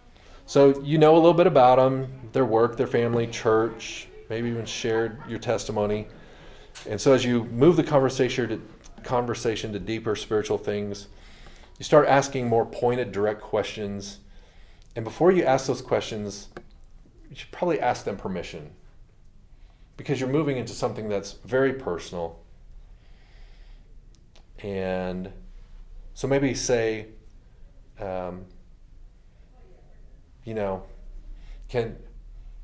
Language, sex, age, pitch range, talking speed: English, male, 40-59, 95-125 Hz, 120 wpm